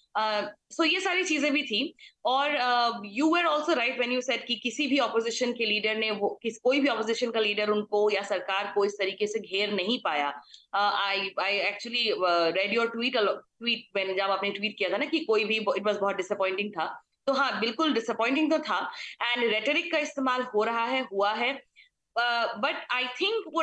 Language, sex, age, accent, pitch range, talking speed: Hindi, female, 20-39, native, 210-290 Hz, 180 wpm